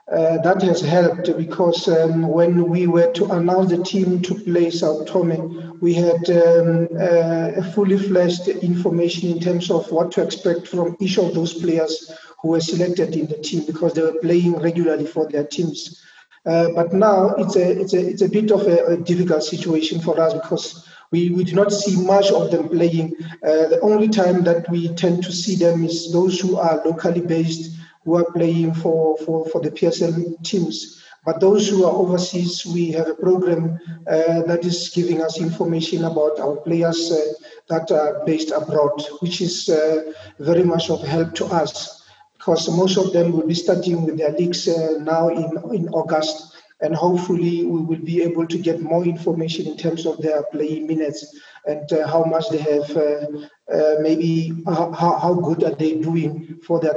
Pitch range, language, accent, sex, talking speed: 160-175 Hz, English, South African, male, 190 wpm